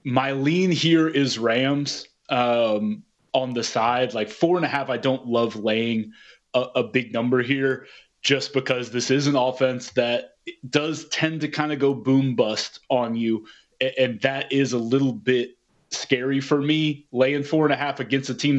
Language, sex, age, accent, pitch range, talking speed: English, male, 20-39, American, 125-155 Hz, 185 wpm